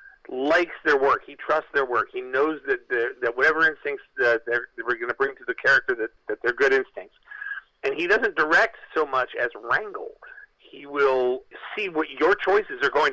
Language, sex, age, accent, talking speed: English, male, 50-69, American, 190 wpm